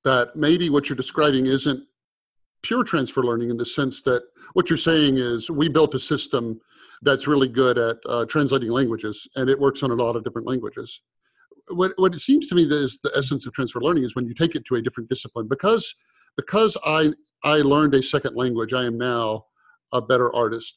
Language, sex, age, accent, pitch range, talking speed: English, male, 50-69, American, 120-145 Hz, 210 wpm